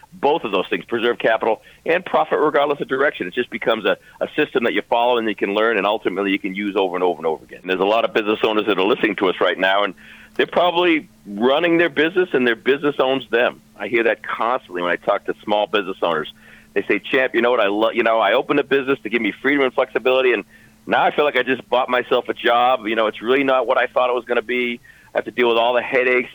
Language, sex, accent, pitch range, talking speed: English, male, American, 115-145 Hz, 275 wpm